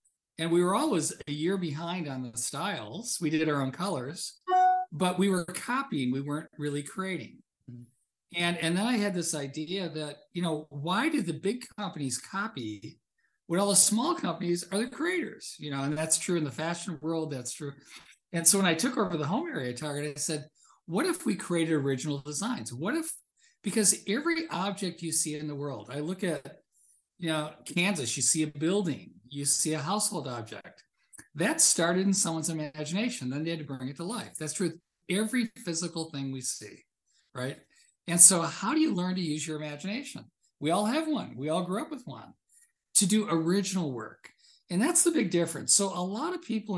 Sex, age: male, 50-69